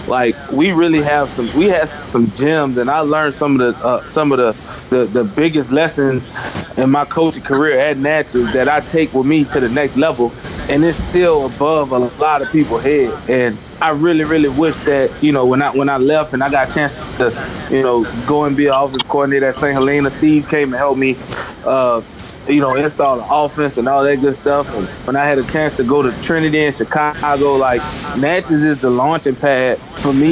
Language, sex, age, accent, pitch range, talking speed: English, male, 20-39, American, 130-150 Hz, 225 wpm